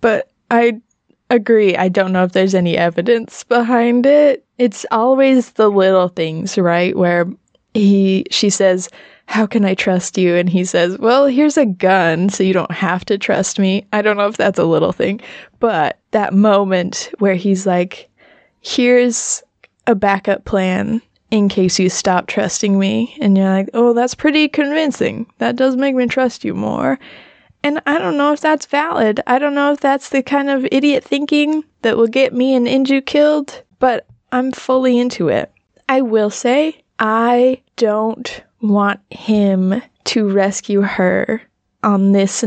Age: 20-39